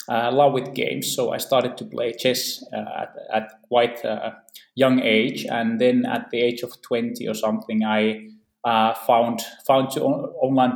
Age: 20-39